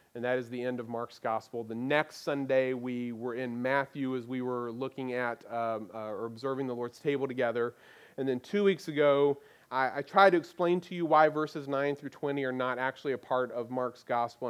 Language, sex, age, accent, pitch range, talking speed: English, male, 40-59, American, 125-170 Hz, 220 wpm